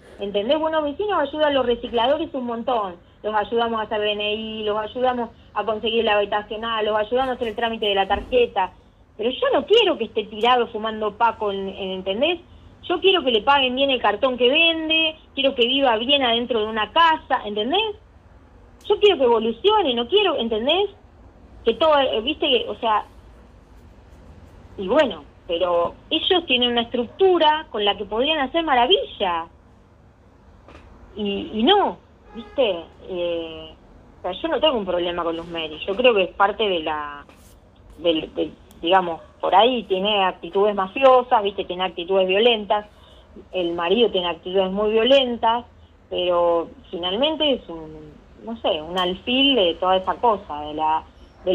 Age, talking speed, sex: 20-39, 165 wpm, female